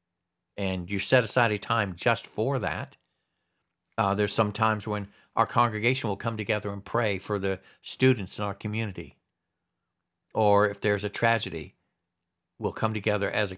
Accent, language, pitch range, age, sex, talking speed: American, English, 90-125 Hz, 50-69, male, 165 wpm